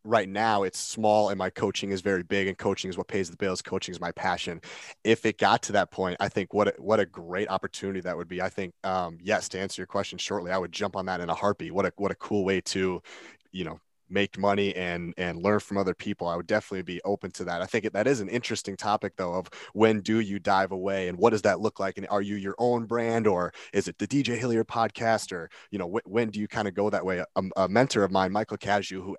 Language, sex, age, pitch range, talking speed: English, male, 30-49, 95-110 Hz, 265 wpm